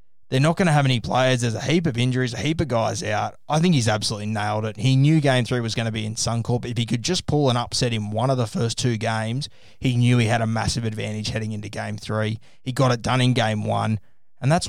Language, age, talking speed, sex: English, 20-39, 275 wpm, male